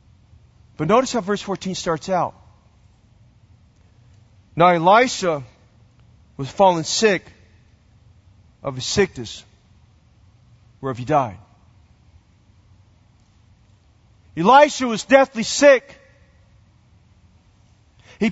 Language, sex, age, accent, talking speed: English, male, 40-59, American, 75 wpm